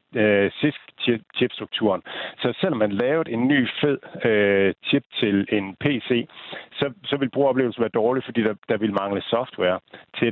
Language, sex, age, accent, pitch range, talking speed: Danish, male, 60-79, native, 100-130 Hz, 155 wpm